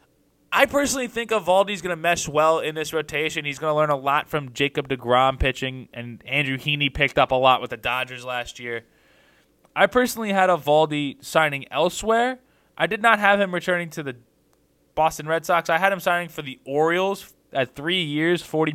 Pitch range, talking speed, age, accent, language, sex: 140-175 Hz, 190 wpm, 20-39, American, English, male